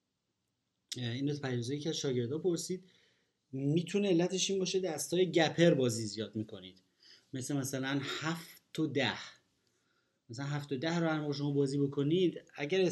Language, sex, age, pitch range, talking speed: Persian, male, 30-49, 120-155 Hz, 140 wpm